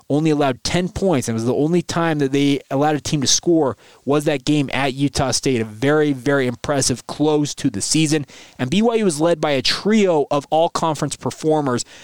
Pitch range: 140-165 Hz